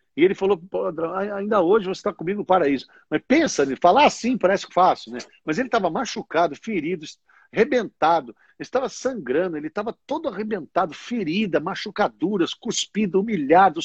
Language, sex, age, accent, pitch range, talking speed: Portuguese, male, 60-79, Brazilian, 170-250 Hz, 155 wpm